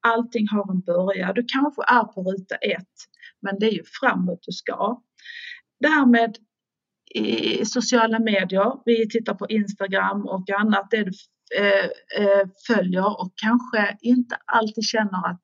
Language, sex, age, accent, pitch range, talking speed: Swedish, female, 40-59, native, 190-235 Hz, 145 wpm